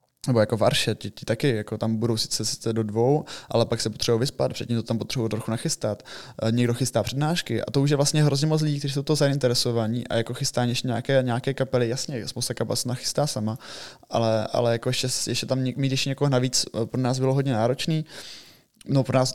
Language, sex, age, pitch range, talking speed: Czech, male, 20-39, 115-130 Hz, 215 wpm